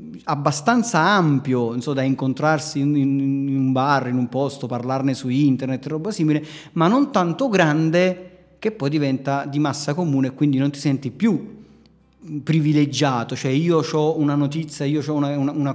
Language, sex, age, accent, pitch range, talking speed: Italian, male, 30-49, native, 135-165 Hz, 170 wpm